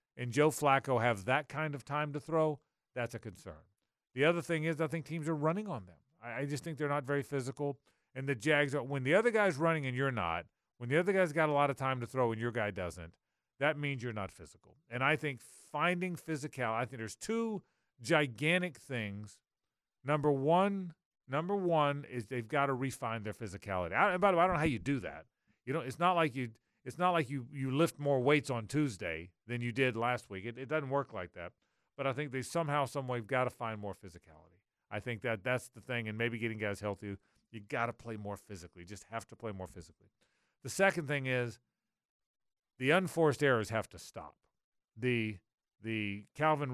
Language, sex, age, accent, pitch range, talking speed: English, male, 40-59, American, 110-145 Hz, 220 wpm